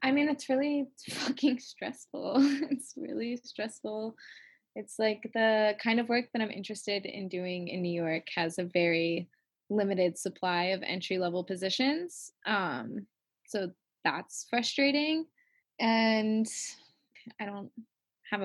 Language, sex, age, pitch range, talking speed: English, female, 10-29, 205-285 Hz, 125 wpm